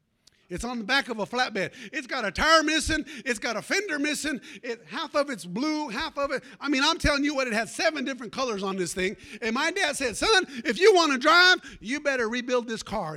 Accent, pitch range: American, 195-295 Hz